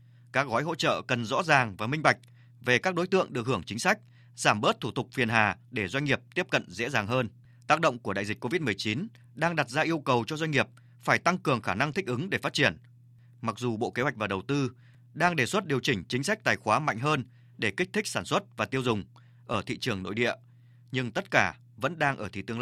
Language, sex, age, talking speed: Vietnamese, male, 20-39, 255 wpm